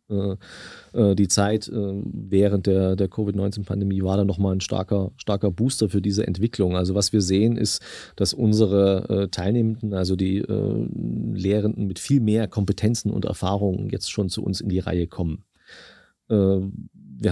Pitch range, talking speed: 100-115 Hz, 145 wpm